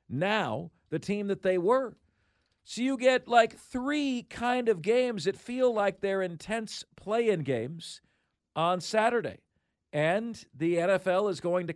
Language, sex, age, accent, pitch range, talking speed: English, male, 50-69, American, 150-210 Hz, 150 wpm